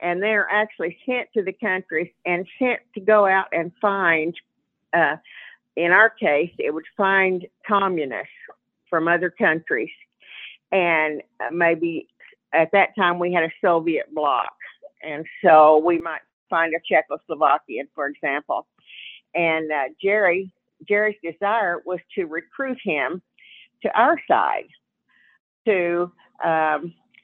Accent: American